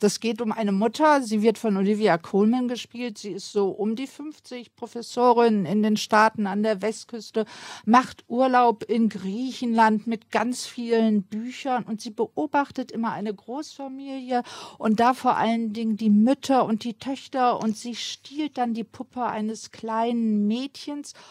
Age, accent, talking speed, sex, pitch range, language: 50-69, German, 160 wpm, female, 210-245 Hz, German